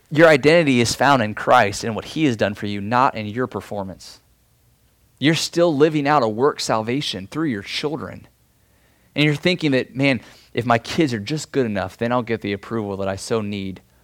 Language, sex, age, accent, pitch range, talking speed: English, male, 20-39, American, 100-140 Hz, 205 wpm